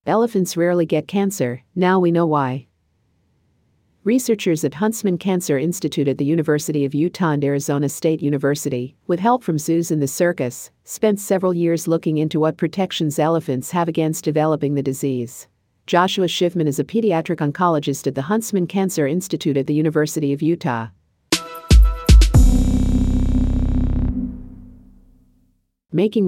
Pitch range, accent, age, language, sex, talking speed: 140-165 Hz, American, 50-69, English, female, 135 wpm